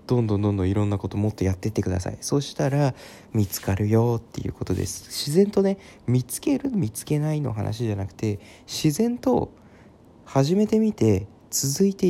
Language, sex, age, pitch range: Japanese, male, 20-39, 105-160 Hz